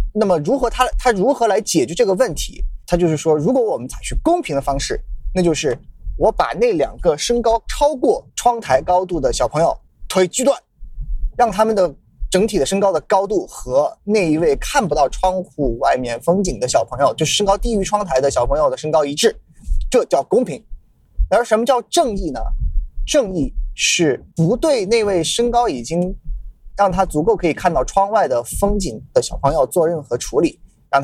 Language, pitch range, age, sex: Chinese, 155-245 Hz, 20-39, male